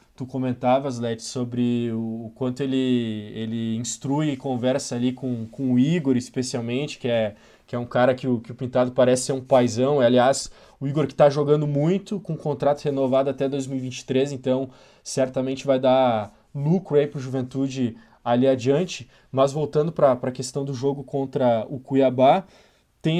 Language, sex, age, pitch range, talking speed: Portuguese, male, 20-39, 125-145 Hz, 175 wpm